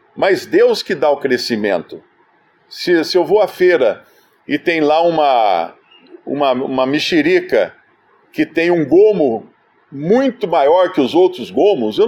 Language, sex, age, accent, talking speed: Portuguese, male, 50-69, Brazilian, 150 wpm